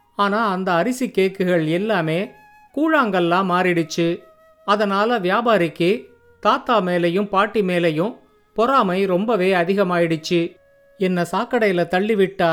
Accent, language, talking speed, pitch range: native, Tamil, 90 wpm, 175-220 Hz